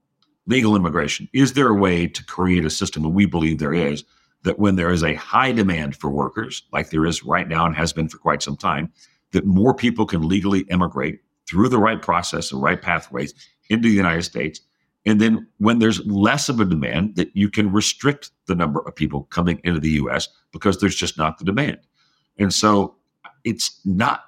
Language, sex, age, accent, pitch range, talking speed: English, male, 60-79, American, 80-100 Hz, 205 wpm